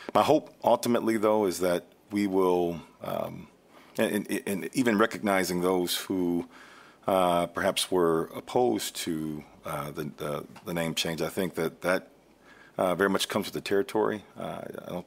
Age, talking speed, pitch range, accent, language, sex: 40-59, 155 wpm, 80-95 Hz, American, English, male